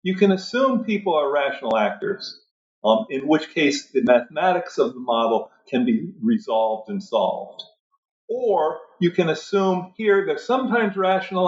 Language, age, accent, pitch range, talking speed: English, 50-69, American, 145-220 Hz, 150 wpm